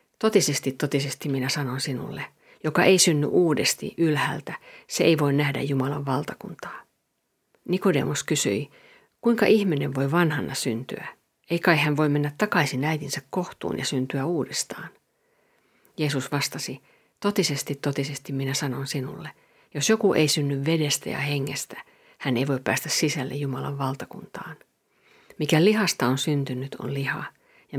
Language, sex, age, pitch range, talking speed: Finnish, female, 50-69, 140-185 Hz, 130 wpm